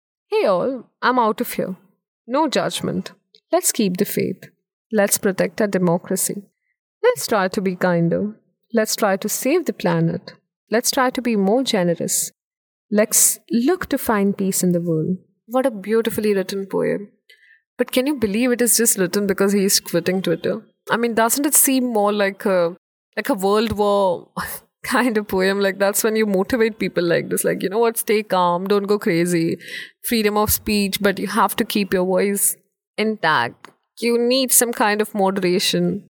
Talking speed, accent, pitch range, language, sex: 180 wpm, Indian, 190-235 Hz, English, female